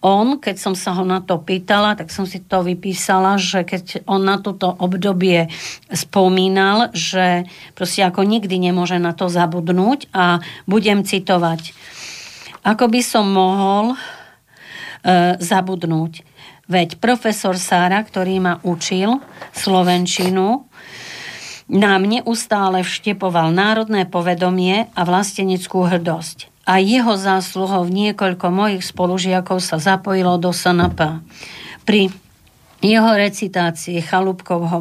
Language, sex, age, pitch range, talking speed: Slovak, female, 40-59, 175-200 Hz, 115 wpm